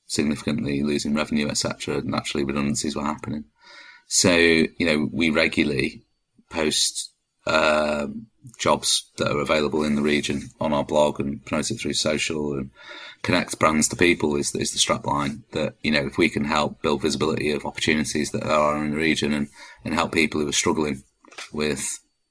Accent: British